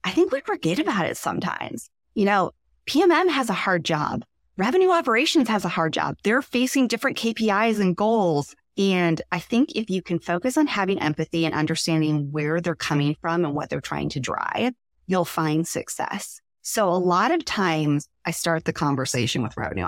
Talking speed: 185 wpm